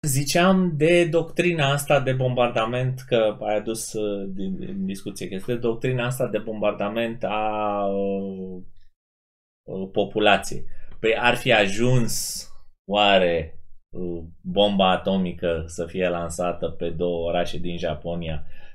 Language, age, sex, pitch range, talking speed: Romanian, 20-39, male, 85-120 Hz, 120 wpm